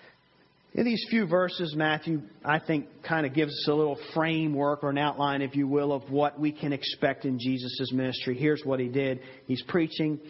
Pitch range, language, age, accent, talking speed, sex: 135-165 Hz, English, 40-59, American, 200 wpm, male